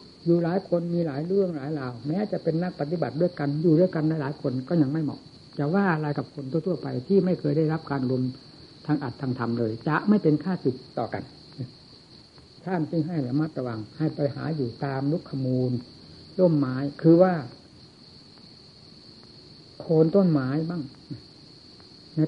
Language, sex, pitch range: Thai, female, 140-175 Hz